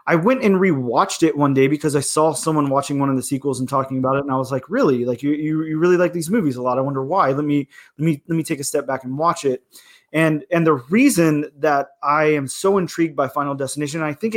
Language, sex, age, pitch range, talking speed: English, male, 20-39, 145-170 Hz, 270 wpm